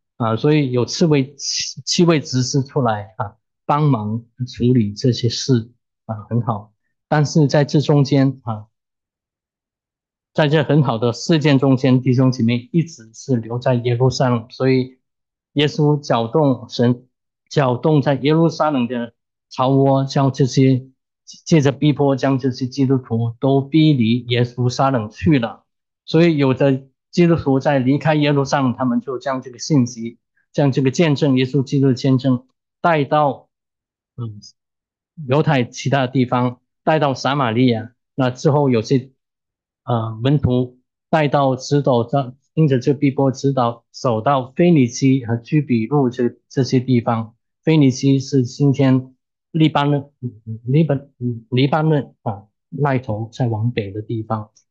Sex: male